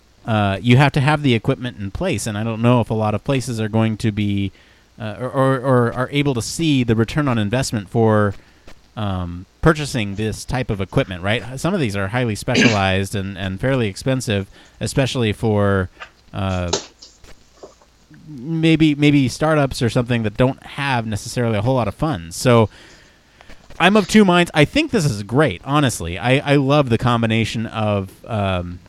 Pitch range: 100-125 Hz